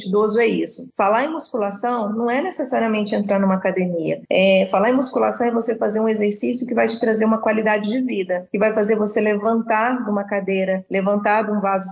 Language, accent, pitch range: Portuguese, Brazilian, 205-260 Hz